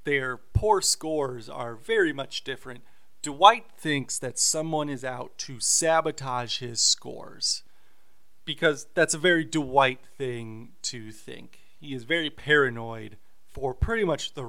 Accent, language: American, English